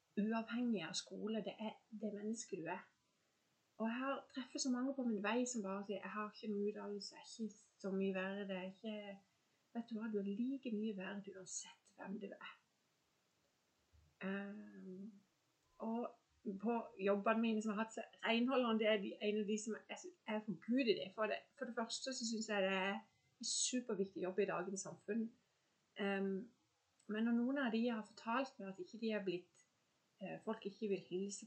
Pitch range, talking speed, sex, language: 195-235 Hz, 195 wpm, female, English